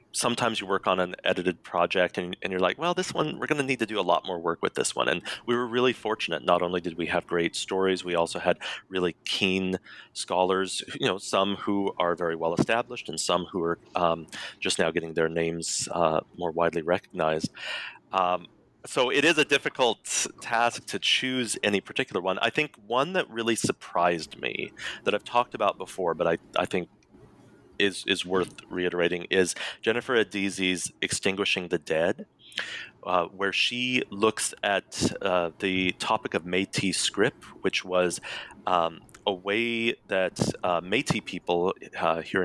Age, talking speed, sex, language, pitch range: 30-49, 180 wpm, male, English, 90-115 Hz